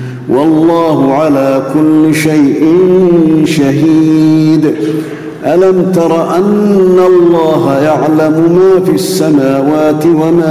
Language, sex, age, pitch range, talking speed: Arabic, male, 50-69, 130-160 Hz, 80 wpm